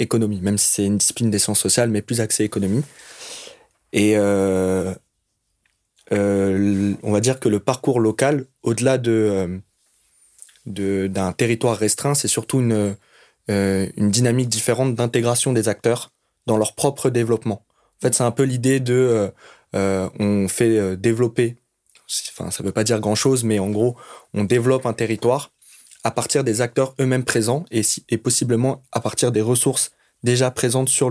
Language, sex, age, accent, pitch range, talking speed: French, male, 20-39, French, 105-125 Hz, 165 wpm